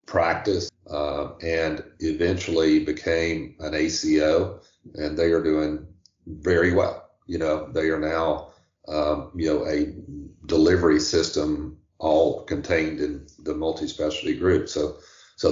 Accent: American